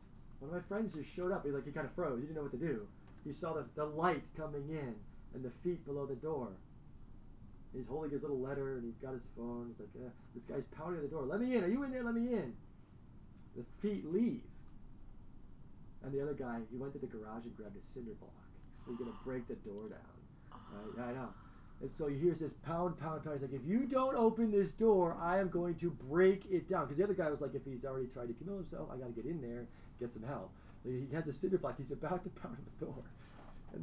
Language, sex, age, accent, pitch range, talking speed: English, male, 30-49, American, 135-185 Hz, 255 wpm